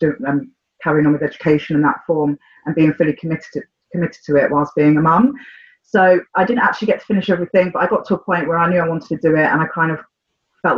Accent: British